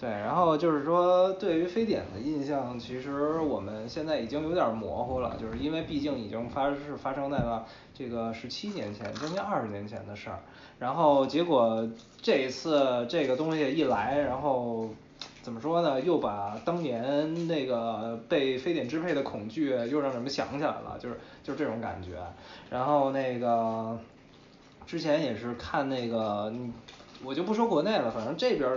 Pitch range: 115-145 Hz